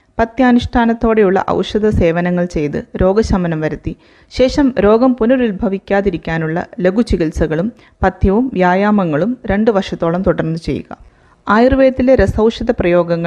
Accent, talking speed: native, 85 wpm